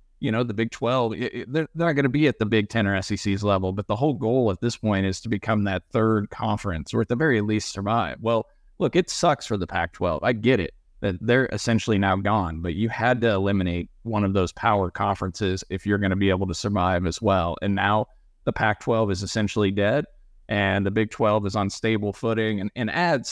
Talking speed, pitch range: 235 wpm, 95-115 Hz